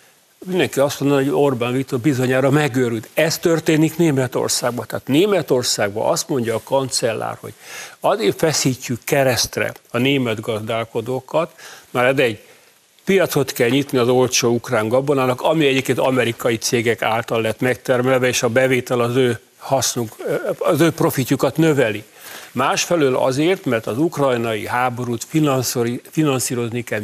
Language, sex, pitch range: Hungarian, male, 120-145 Hz